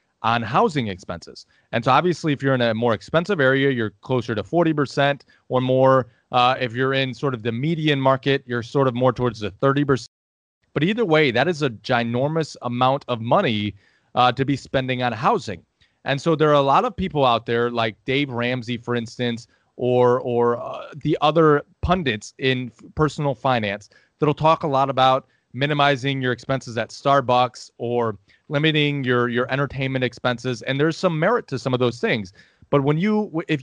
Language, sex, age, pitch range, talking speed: English, male, 30-49, 125-145 Hz, 185 wpm